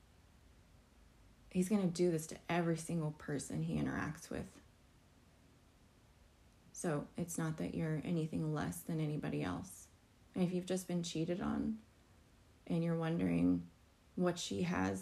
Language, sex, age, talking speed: English, female, 20-39, 135 wpm